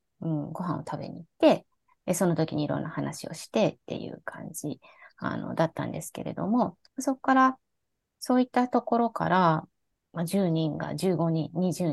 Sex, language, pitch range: female, Japanese, 170-265 Hz